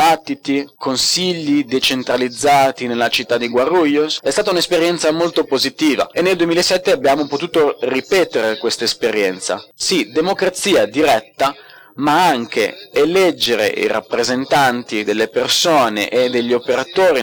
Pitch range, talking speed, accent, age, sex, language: 120-155 Hz, 110 wpm, native, 30-49, male, Italian